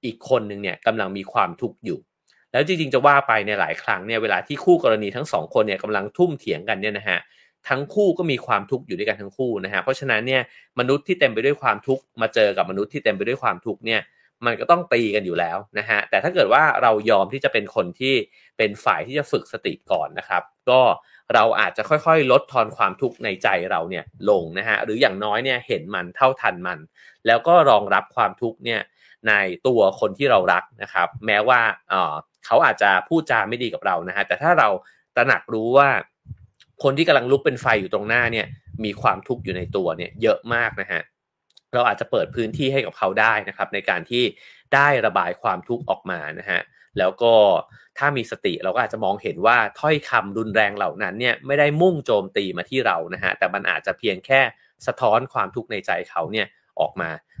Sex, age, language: male, 30-49, English